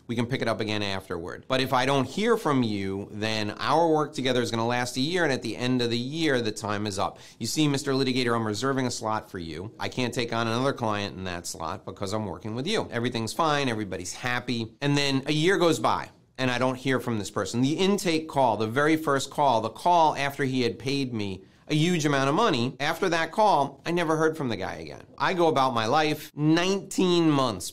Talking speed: 240 wpm